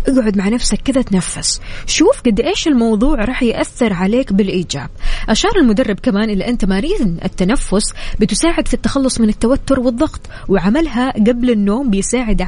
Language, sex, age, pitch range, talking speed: Arabic, female, 20-39, 185-245 Hz, 145 wpm